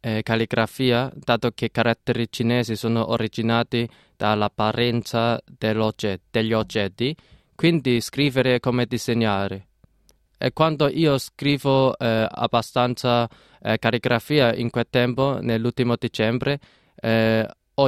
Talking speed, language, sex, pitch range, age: 100 wpm, Italian, male, 115-130 Hz, 20-39